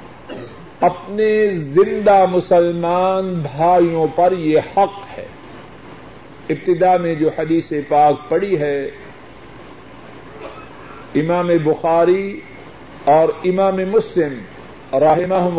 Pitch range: 160-190 Hz